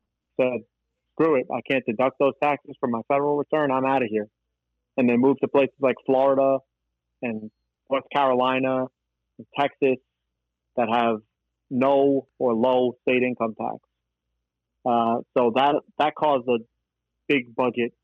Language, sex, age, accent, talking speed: English, male, 30-49, American, 145 wpm